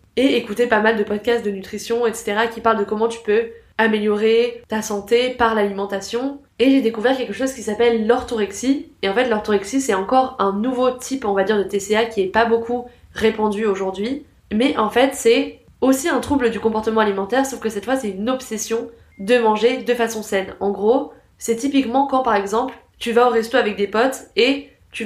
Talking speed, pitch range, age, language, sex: 205 wpm, 215-250 Hz, 20-39, French, female